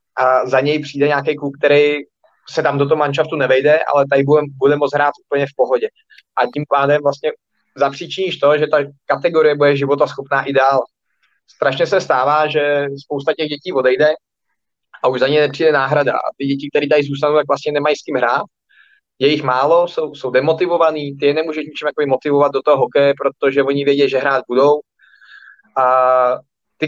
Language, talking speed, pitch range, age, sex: Czech, 185 wpm, 140-150 Hz, 20-39, male